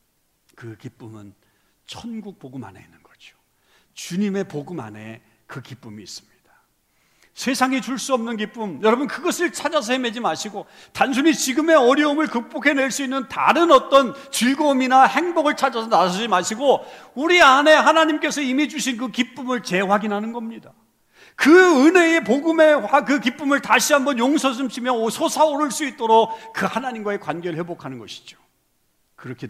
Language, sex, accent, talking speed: English, male, Korean, 130 wpm